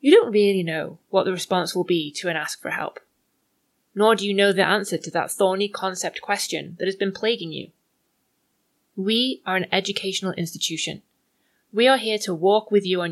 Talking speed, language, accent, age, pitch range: 195 wpm, English, British, 20-39, 175-225 Hz